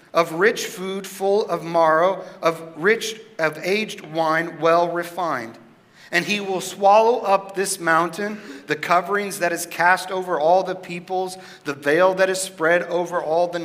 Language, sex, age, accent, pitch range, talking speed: English, male, 40-59, American, 160-190 Hz, 165 wpm